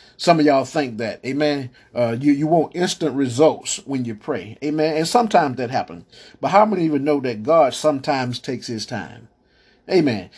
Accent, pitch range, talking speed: American, 120-155 Hz, 185 wpm